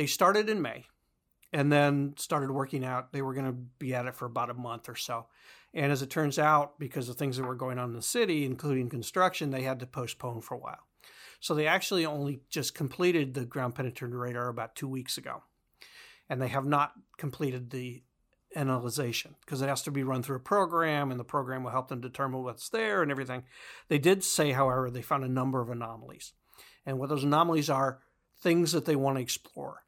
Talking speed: 215 wpm